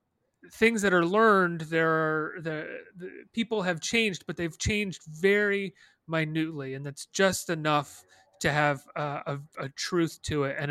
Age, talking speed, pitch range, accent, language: 30-49, 160 wpm, 140-165 Hz, American, English